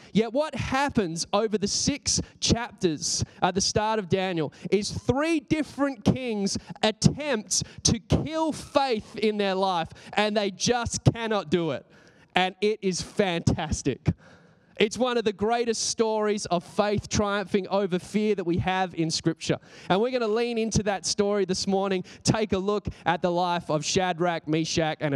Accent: Australian